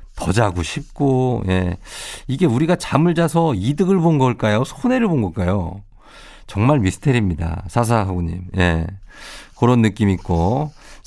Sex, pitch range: male, 100-150 Hz